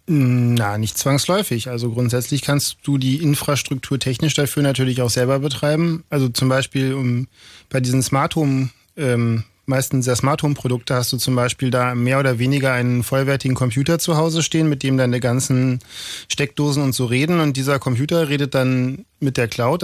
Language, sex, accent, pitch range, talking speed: German, male, German, 125-145 Hz, 175 wpm